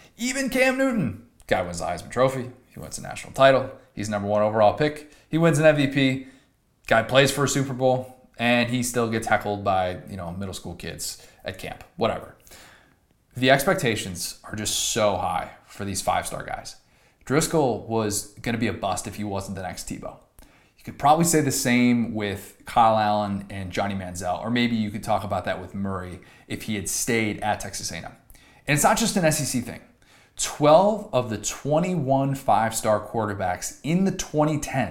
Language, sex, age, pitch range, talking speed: English, male, 20-39, 105-135 Hz, 185 wpm